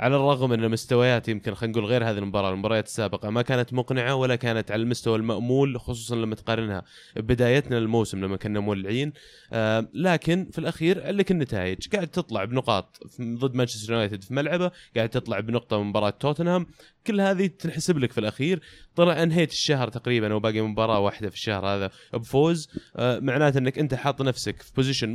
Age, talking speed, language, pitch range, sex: 20-39, 175 wpm, Arabic, 115-145 Hz, male